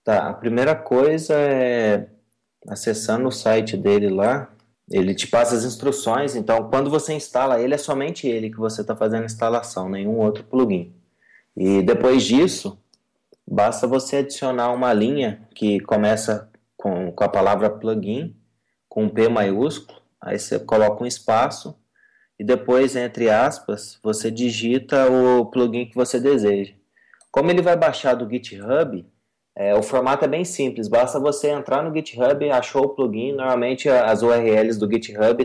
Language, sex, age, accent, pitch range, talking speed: Portuguese, male, 20-39, Brazilian, 110-130 Hz, 155 wpm